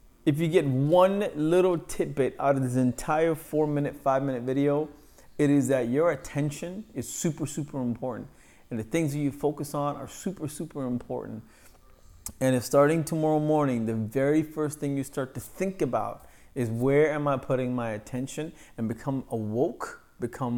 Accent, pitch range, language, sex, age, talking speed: American, 120-150 Hz, English, male, 30-49, 175 wpm